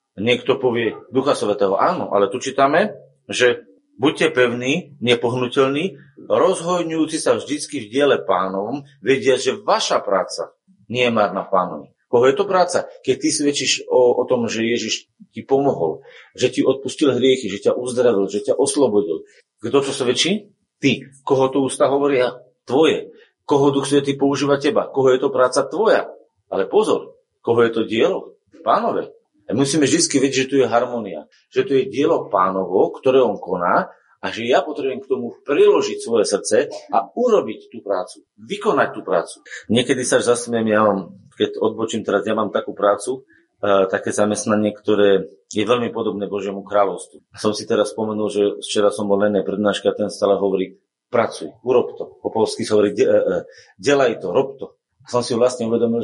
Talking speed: 170 wpm